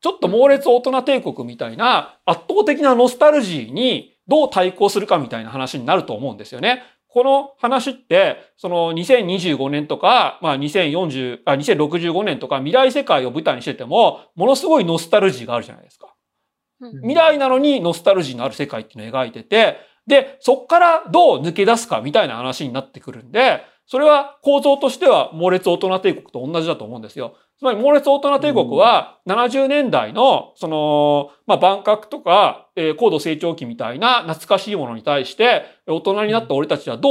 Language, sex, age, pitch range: Japanese, male, 40-59, 165-275 Hz